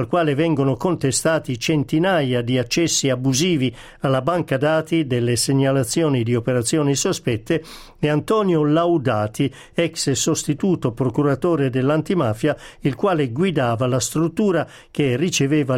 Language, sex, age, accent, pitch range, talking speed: Italian, male, 50-69, native, 130-160 Hz, 110 wpm